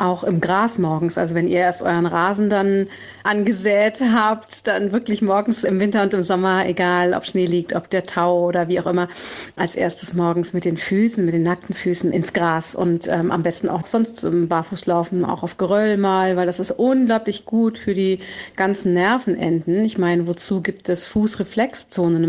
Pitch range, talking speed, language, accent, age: 180-215 Hz, 190 wpm, German, German, 40-59